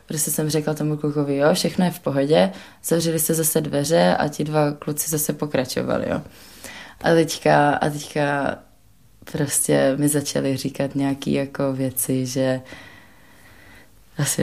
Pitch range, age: 140-165 Hz, 20-39